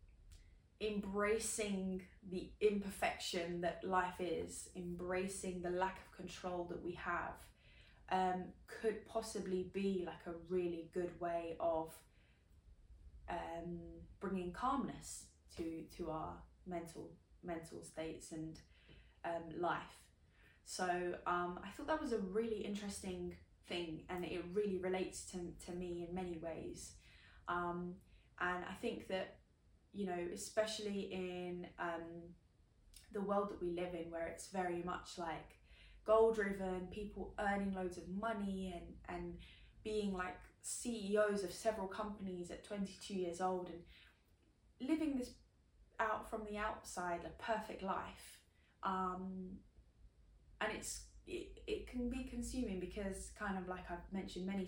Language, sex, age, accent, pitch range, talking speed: English, female, 10-29, British, 175-205 Hz, 135 wpm